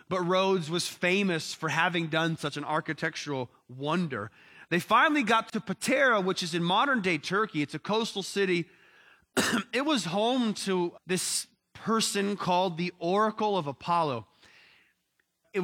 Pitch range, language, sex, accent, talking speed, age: 160-190 Hz, English, male, American, 140 wpm, 30-49